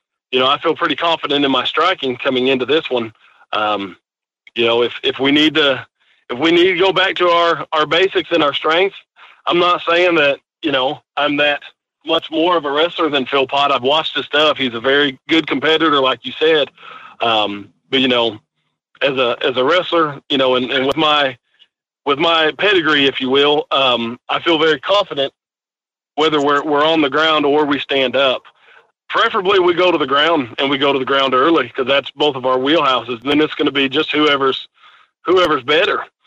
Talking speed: 210 wpm